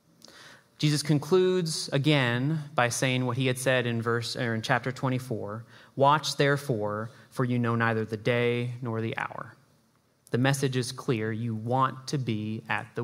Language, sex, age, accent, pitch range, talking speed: English, male, 30-49, American, 120-150 Hz, 165 wpm